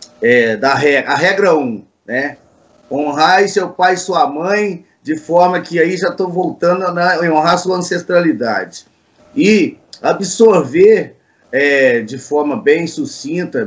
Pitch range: 145-185 Hz